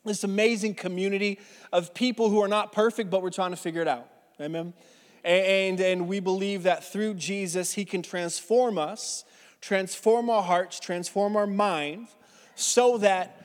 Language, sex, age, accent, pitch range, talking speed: English, male, 20-39, American, 170-200 Hz, 160 wpm